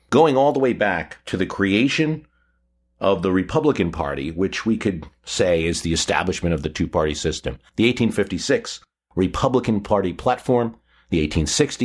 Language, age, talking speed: English, 50-69, 150 wpm